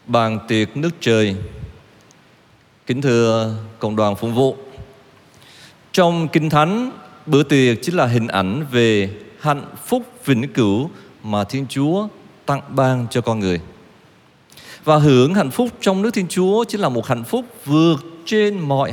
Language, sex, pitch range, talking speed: Vietnamese, male, 115-160 Hz, 150 wpm